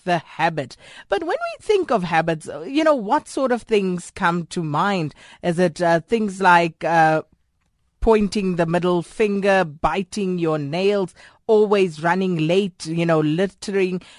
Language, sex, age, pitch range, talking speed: English, female, 30-49, 175-240 Hz, 150 wpm